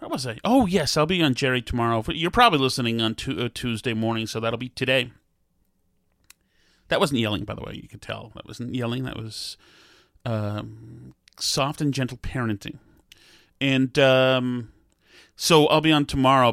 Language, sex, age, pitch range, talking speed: English, male, 30-49, 115-145 Hz, 165 wpm